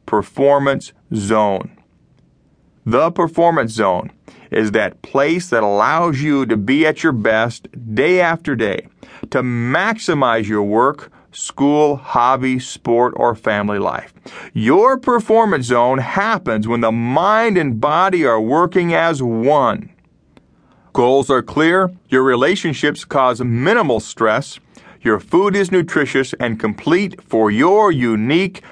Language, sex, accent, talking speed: English, male, American, 125 wpm